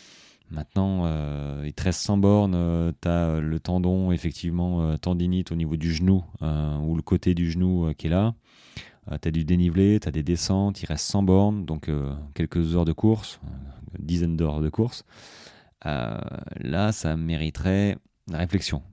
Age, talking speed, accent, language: 30-49, 180 wpm, French, French